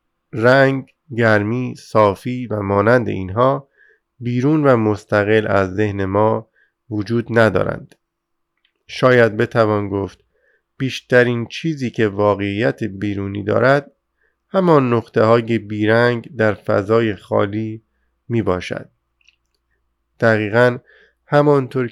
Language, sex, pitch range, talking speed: Persian, male, 105-125 Hz, 95 wpm